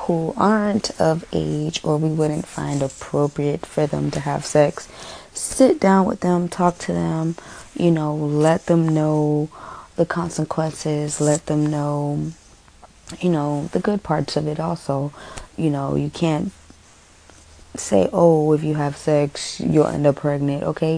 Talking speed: 150 wpm